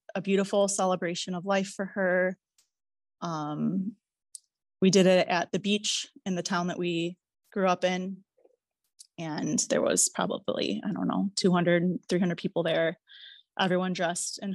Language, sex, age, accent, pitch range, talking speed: English, female, 20-39, American, 170-205 Hz, 150 wpm